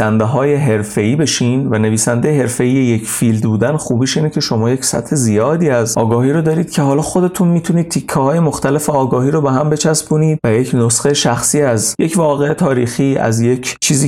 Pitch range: 110-145 Hz